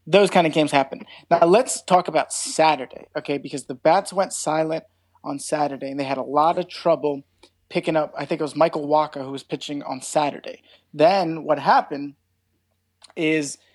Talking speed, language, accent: 190 wpm, English, American